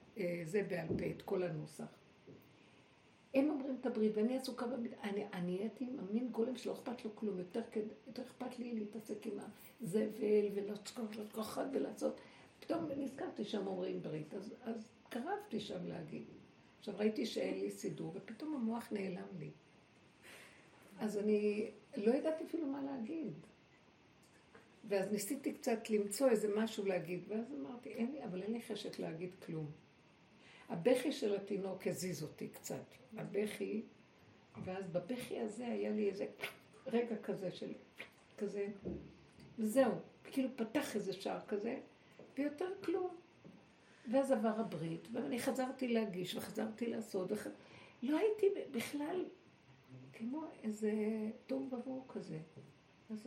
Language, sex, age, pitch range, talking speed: Hebrew, female, 60-79, 200-255 Hz, 135 wpm